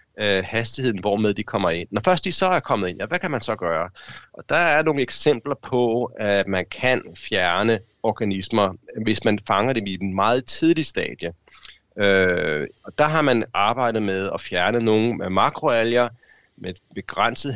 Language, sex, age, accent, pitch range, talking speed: Danish, male, 30-49, native, 100-125 Hz, 180 wpm